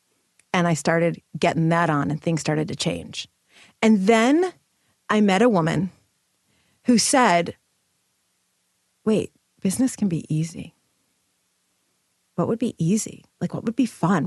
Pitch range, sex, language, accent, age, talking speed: 170-210 Hz, female, English, American, 30-49, 140 wpm